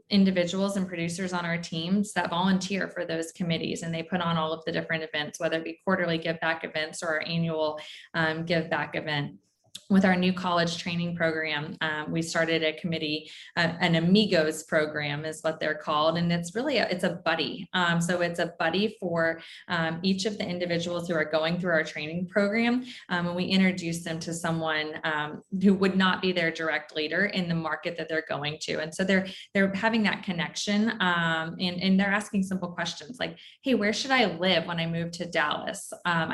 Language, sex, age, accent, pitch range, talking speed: English, female, 20-39, American, 160-185 Hz, 210 wpm